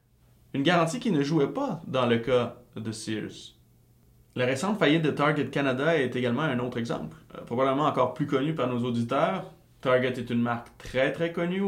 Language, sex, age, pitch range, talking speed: French, male, 30-49, 120-145 Hz, 185 wpm